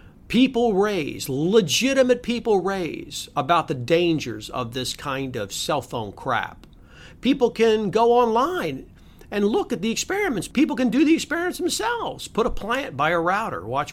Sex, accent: male, American